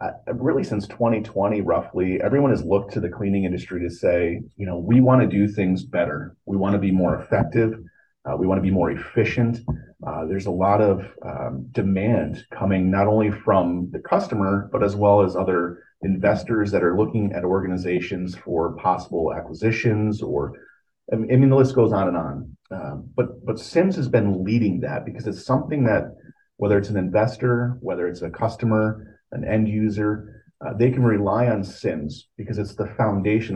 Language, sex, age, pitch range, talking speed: English, male, 30-49, 95-110 Hz, 190 wpm